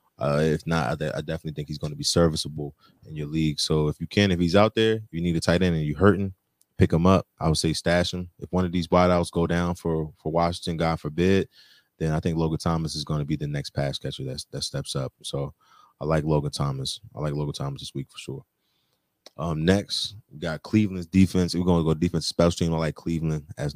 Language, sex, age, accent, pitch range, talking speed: English, male, 20-39, American, 75-85 Hz, 255 wpm